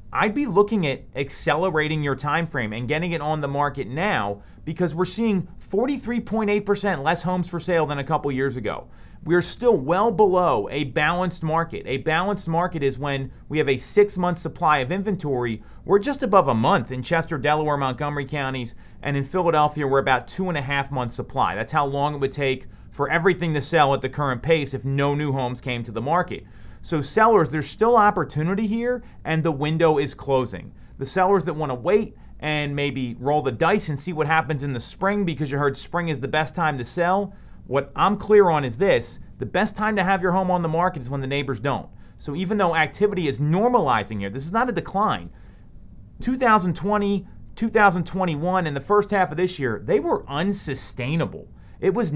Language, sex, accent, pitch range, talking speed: English, male, American, 135-185 Hz, 200 wpm